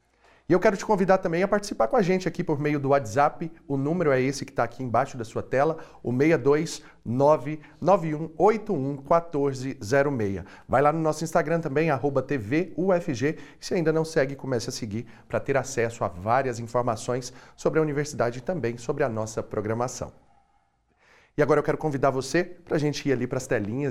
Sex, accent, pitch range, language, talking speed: male, Brazilian, 115-150 Hz, Portuguese, 185 wpm